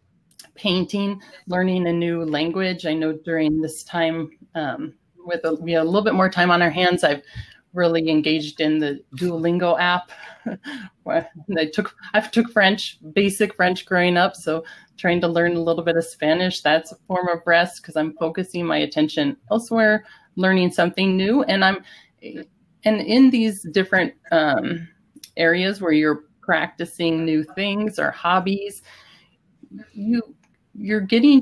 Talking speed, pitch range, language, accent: 155 wpm, 165-205 Hz, English, American